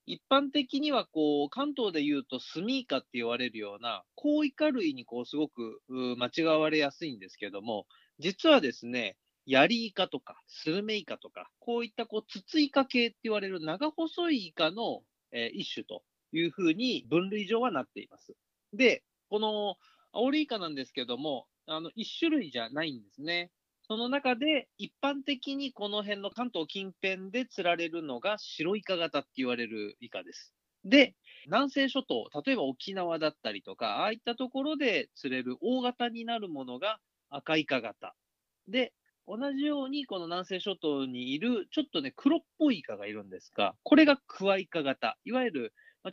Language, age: Japanese, 30-49